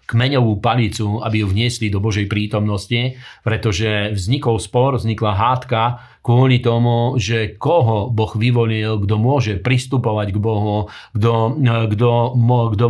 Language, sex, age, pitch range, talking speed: Slovak, male, 40-59, 110-125 Hz, 115 wpm